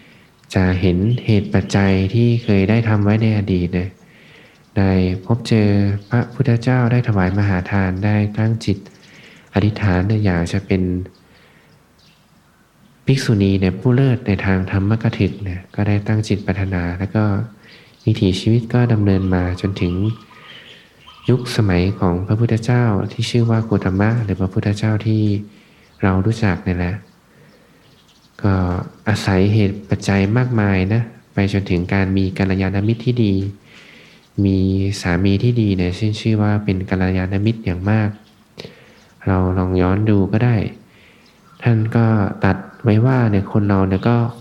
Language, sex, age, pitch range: Thai, male, 20-39, 95-110 Hz